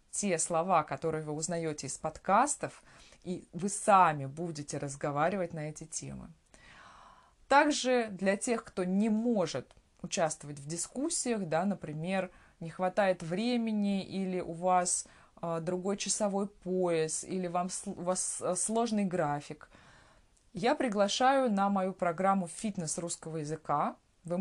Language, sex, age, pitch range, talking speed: Russian, female, 20-39, 165-210 Hz, 120 wpm